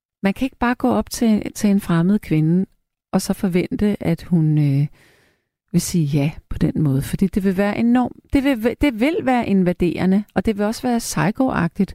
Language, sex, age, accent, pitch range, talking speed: Danish, female, 30-49, native, 170-225 Hz, 200 wpm